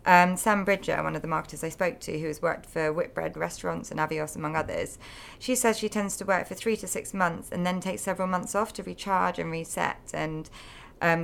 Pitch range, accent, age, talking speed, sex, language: 165-200 Hz, British, 30-49, 230 wpm, female, English